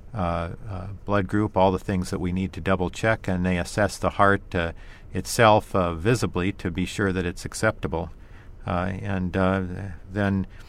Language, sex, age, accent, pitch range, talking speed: English, male, 50-69, American, 90-105 Hz, 180 wpm